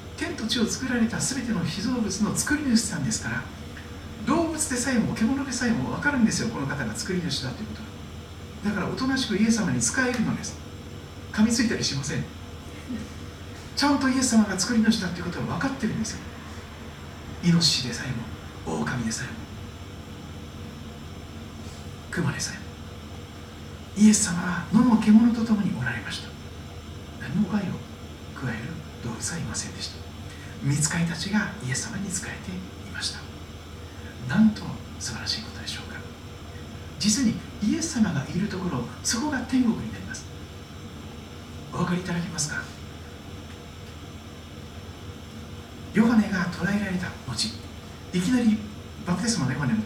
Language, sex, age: Japanese, male, 60-79